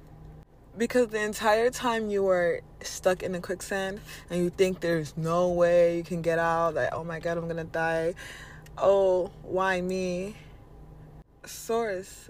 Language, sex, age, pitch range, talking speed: English, female, 20-39, 175-210 Hz, 155 wpm